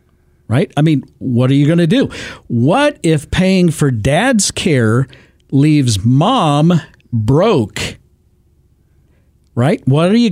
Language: English